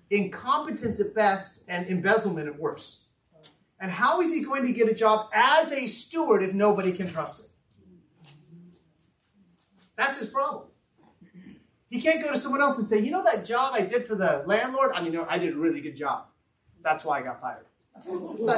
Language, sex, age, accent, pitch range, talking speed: English, male, 30-49, American, 175-270 Hz, 195 wpm